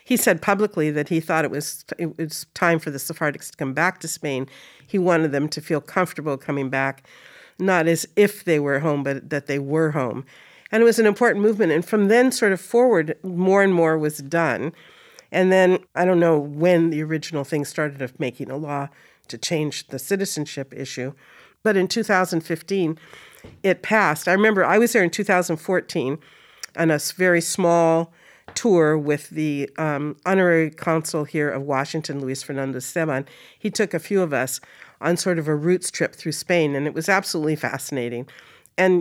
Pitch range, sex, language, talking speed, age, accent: 145-180 Hz, female, English, 185 wpm, 50-69, American